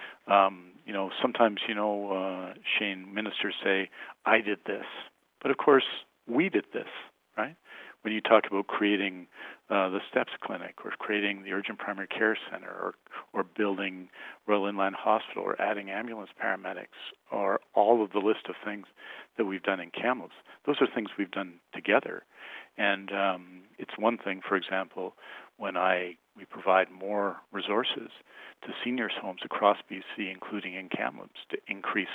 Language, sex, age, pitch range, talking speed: English, male, 50-69, 95-105 Hz, 160 wpm